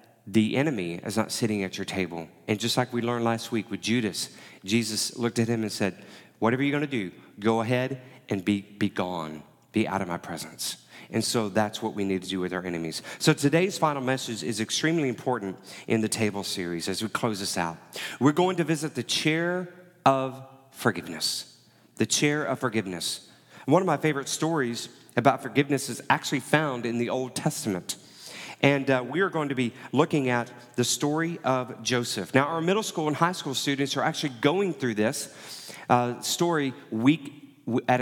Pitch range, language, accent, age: 110-145 Hz, English, American, 40-59